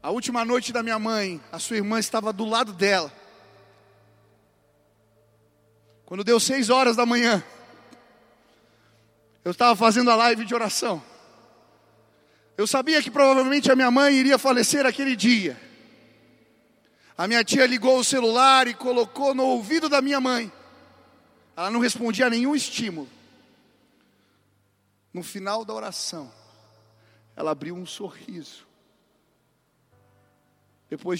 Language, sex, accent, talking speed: Portuguese, male, Brazilian, 125 wpm